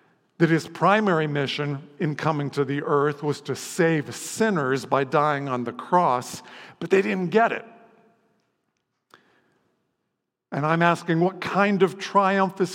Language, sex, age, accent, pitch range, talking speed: English, male, 50-69, American, 135-175 Hz, 145 wpm